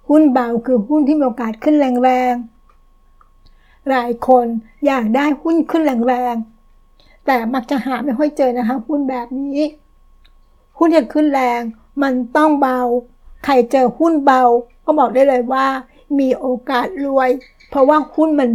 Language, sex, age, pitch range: Thai, female, 60-79, 245-285 Hz